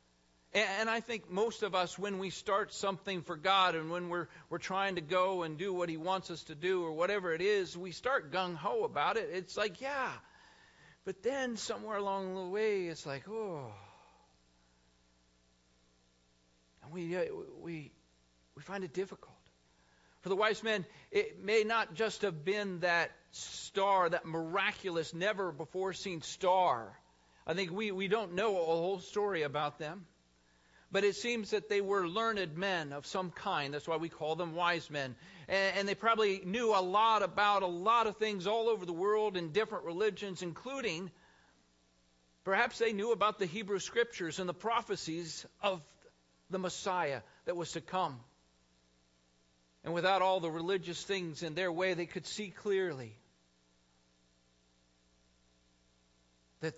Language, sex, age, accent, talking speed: English, male, 50-69, American, 160 wpm